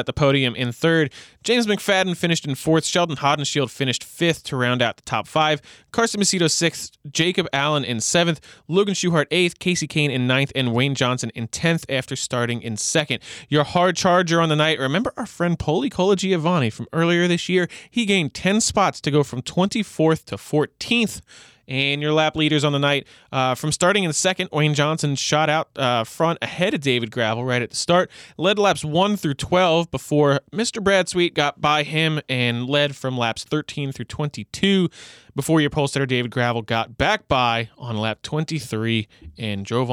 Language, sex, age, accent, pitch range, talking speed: English, male, 20-39, American, 120-165 Hz, 195 wpm